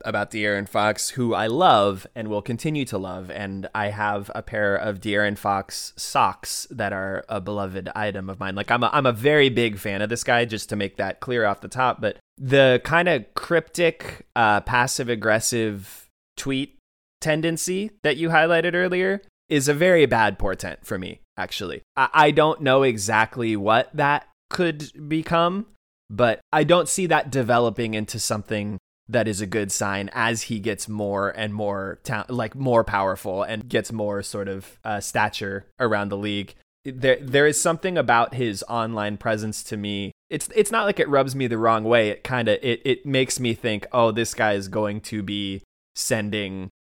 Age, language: 20-39, English